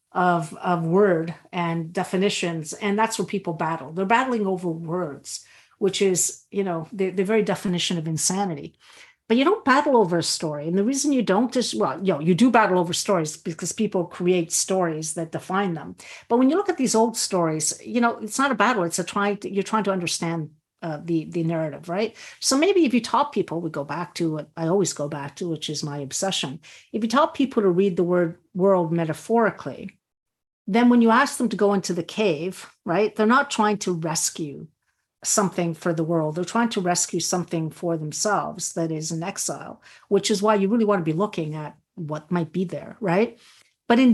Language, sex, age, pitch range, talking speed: English, female, 50-69, 165-215 Hz, 210 wpm